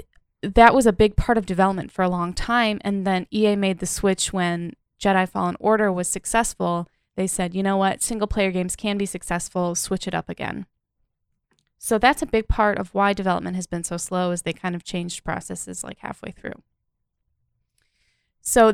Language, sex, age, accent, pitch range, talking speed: English, female, 10-29, American, 180-215 Hz, 190 wpm